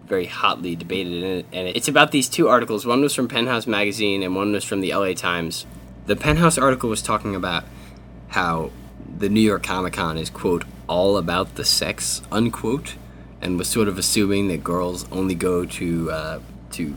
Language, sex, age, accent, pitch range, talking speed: English, male, 20-39, American, 80-100 Hz, 185 wpm